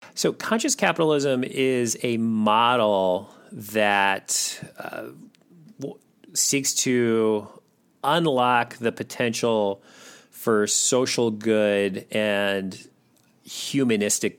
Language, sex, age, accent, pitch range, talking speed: English, male, 40-59, American, 100-120 Hz, 80 wpm